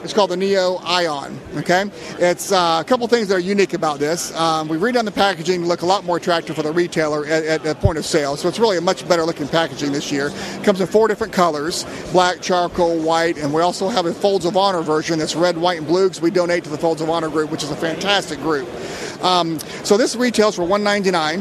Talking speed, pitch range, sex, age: 245 wpm, 160-185 Hz, male, 40-59